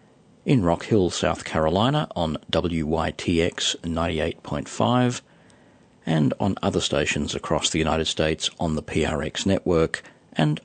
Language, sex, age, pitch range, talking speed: English, male, 40-59, 80-95 Hz, 120 wpm